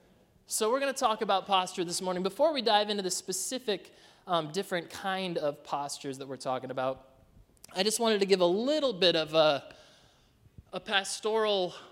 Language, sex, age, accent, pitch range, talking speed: English, male, 20-39, American, 145-200 Hz, 180 wpm